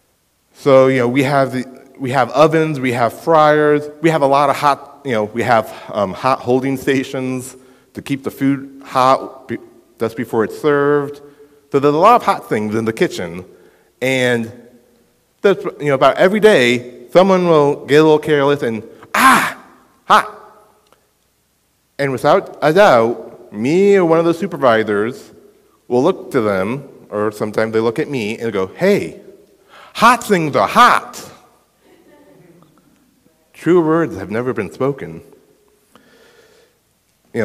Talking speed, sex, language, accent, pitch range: 150 wpm, male, English, American, 130-165 Hz